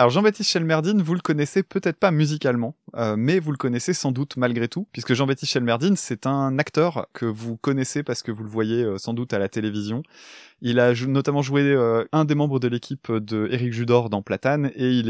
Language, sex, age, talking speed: French, male, 20-39, 225 wpm